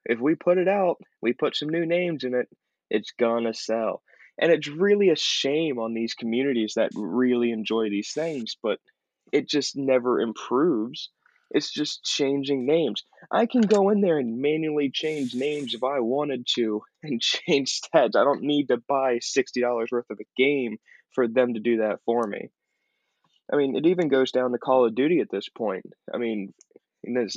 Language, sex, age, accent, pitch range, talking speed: English, male, 20-39, American, 115-150 Hz, 190 wpm